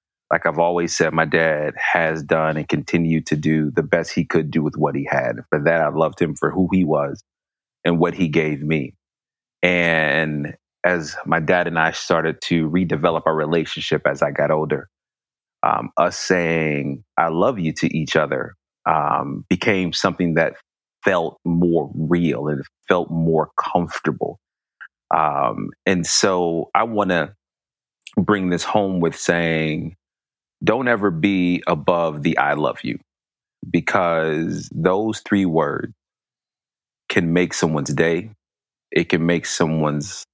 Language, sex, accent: English, male, American